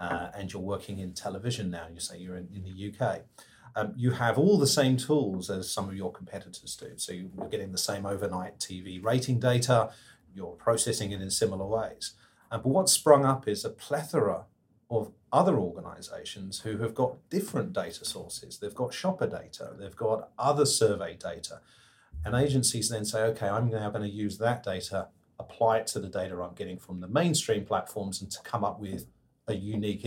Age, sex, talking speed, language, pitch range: 40-59, male, 195 wpm, English, 95-130 Hz